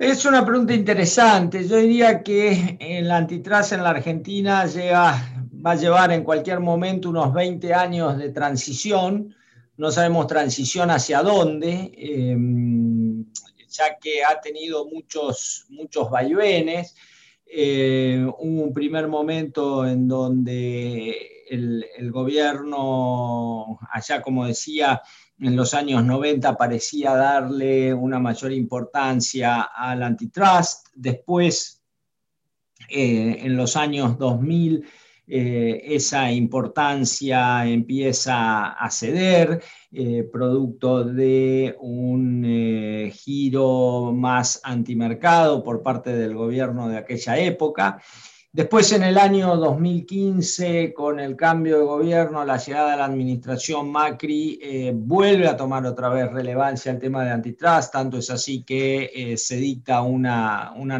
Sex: male